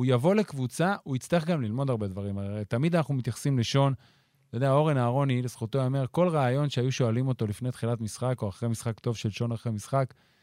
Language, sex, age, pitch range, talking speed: Hebrew, male, 30-49, 120-155 Hz, 215 wpm